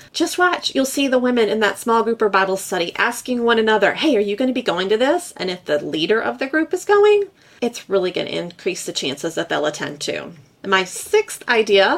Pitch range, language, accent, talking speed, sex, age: 200-275 Hz, English, American, 240 wpm, female, 30-49